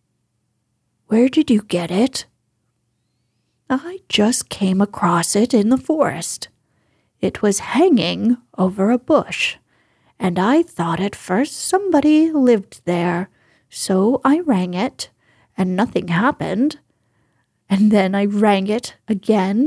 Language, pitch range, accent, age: English, 145-220 Hz, American, 30-49